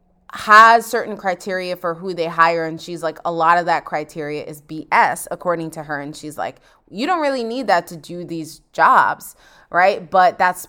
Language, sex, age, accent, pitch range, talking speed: English, female, 20-39, American, 155-195 Hz, 195 wpm